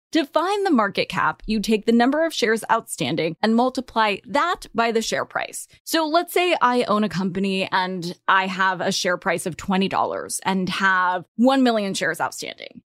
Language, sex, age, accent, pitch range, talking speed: English, female, 20-39, American, 195-295 Hz, 185 wpm